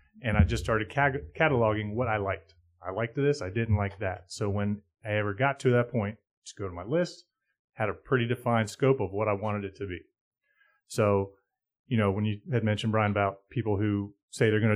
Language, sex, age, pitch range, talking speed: English, male, 30-49, 100-125 Hz, 220 wpm